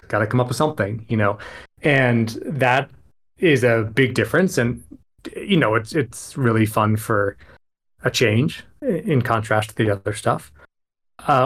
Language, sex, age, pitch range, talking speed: English, male, 20-39, 115-140 Hz, 155 wpm